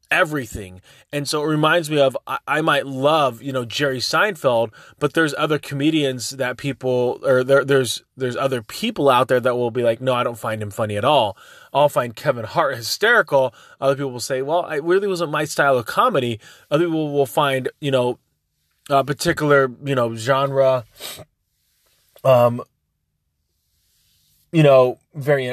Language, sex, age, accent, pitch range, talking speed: English, male, 20-39, American, 115-145 Hz, 170 wpm